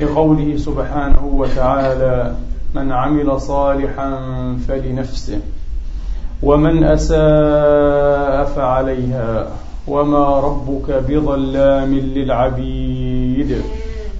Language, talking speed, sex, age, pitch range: Arabic, 60 wpm, male, 40-59, 120-150 Hz